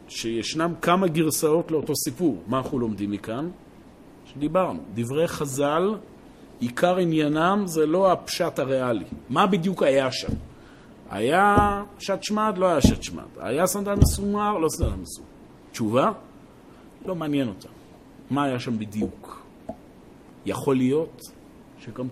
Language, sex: Hebrew, male